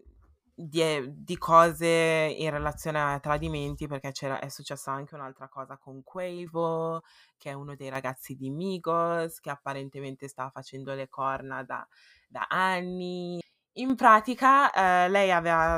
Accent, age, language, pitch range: native, 20-39, Italian, 140-170 Hz